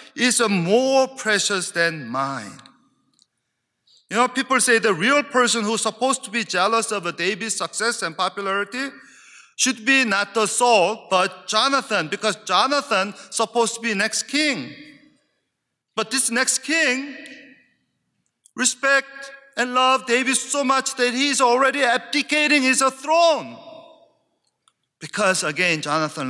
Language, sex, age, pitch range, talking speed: English, male, 40-59, 195-270 Hz, 130 wpm